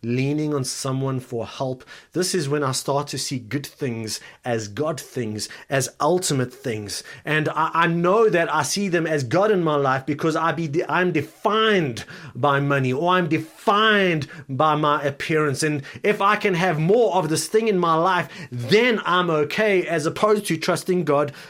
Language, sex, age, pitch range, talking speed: English, male, 30-49, 150-210 Hz, 180 wpm